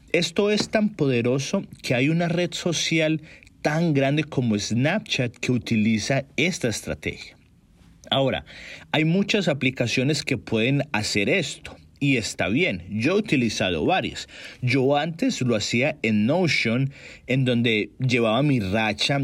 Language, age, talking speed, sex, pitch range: Spanish, 40-59, 135 wpm, male, 115-155 Hz